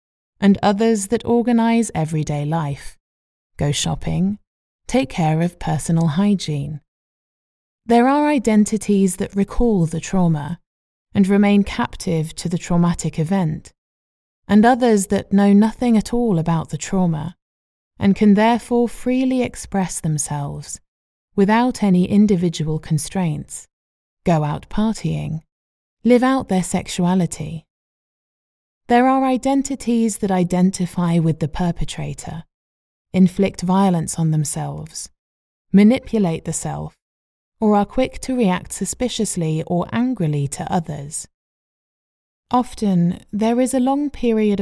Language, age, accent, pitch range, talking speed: English, 20-39, British, 155-210 Hz, 115 wpm